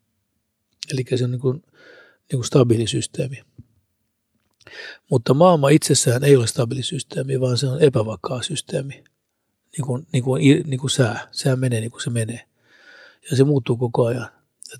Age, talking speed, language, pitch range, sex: 60-79, 155 wpm, Finnish, 120-140 Hz, male